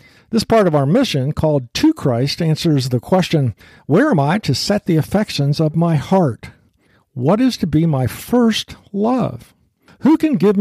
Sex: male